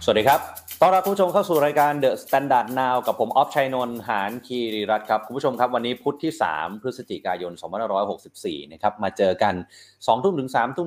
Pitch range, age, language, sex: 105-140 Hz, 20-39, Thai, male